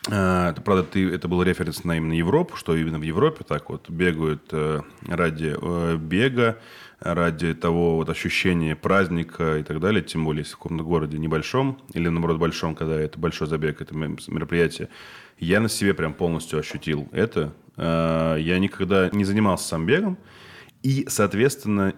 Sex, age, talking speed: male, 20-39, 155 wpm